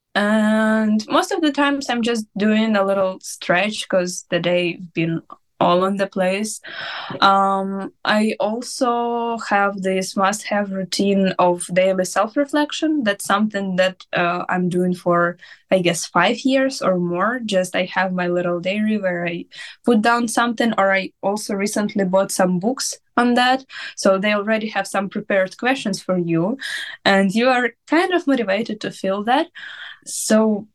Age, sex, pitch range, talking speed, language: 10-29, female, 190-240 Hz, 160 wpm, English